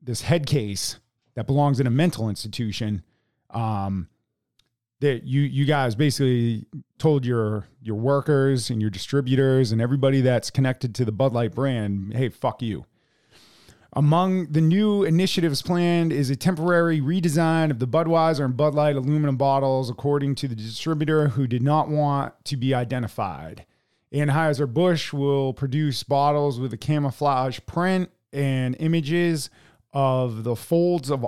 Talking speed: 145 wpm